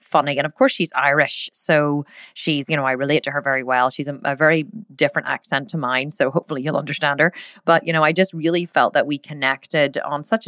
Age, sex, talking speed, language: 30-49, female, 235 wpm, English